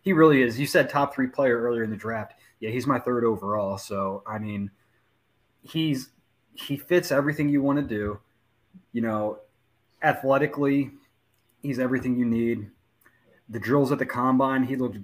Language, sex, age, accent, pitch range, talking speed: English, male, 20-39, American, 110-135 Hz, 170 wpm